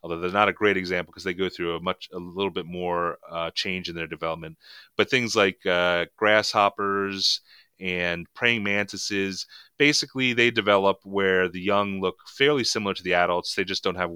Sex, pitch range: male, 85-100 Hz